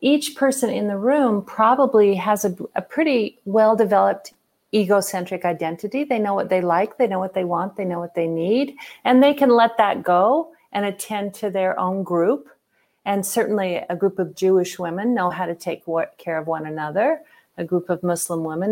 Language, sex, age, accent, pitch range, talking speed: English, female, 50-69, American, 185-235 Hz, 190 wpm